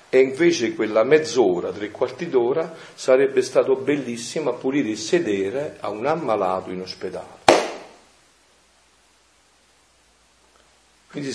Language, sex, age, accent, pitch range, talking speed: Italian, male, 40-59, native, 110-170 Hz, 105 wpm